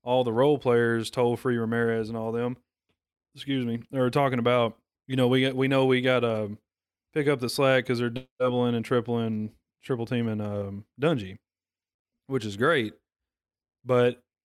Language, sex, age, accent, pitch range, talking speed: English, male, 20-39, American, 105-125 Hz, 175 wpm